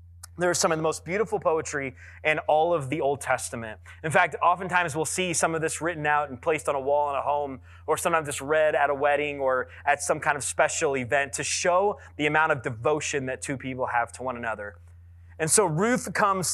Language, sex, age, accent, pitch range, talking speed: English, male, 20-39, American, 120-175 Hz, 230 wpm